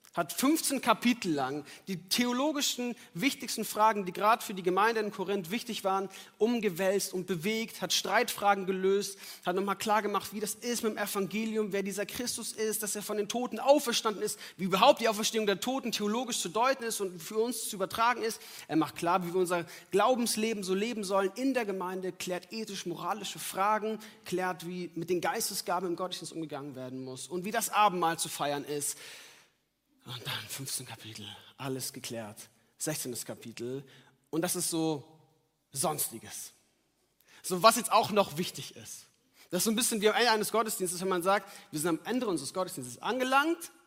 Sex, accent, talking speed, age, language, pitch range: male, German, 180 wpm, 40-59, German, 170-220 Hz